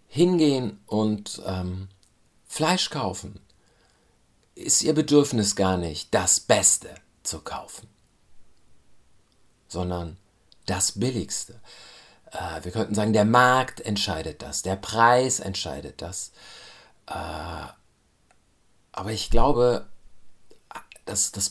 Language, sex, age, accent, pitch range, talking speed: German, male, 50-69, German, 100-130 Hz, 100 wpm